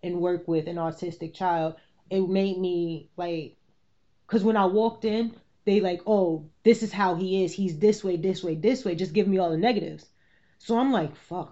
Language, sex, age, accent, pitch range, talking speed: English, female, 20-39, American, 165-200 Hz, 210 wpm